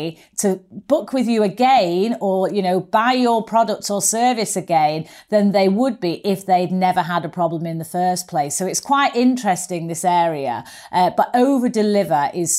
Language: English